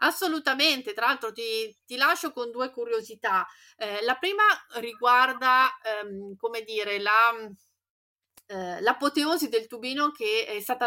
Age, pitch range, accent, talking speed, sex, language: 30-49, 200-255 Hz, native, 120 wpm, female, Italian